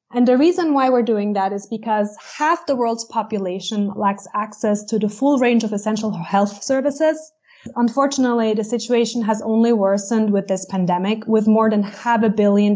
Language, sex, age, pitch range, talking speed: English, female, 20-39, 210-250 Hz, 180 wpm